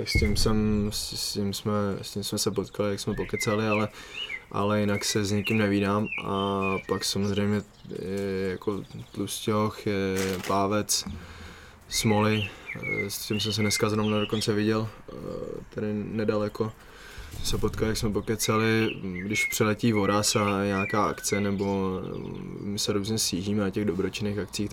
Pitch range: 100-110 Hz